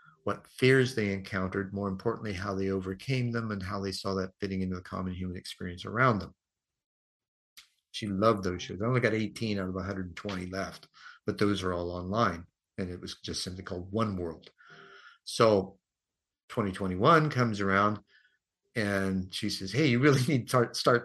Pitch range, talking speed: 95-115 Hz, 175 wpm